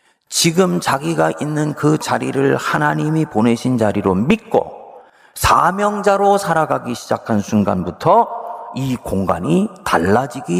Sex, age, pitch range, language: male, 40-59, 105-165 Hz, Korean